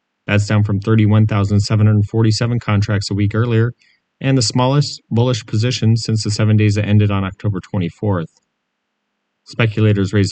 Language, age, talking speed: English, 30-49, 140 wpm